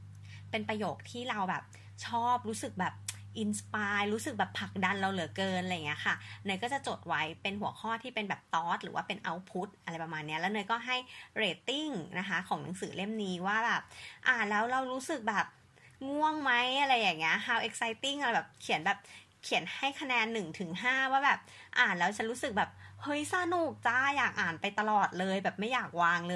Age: 20-39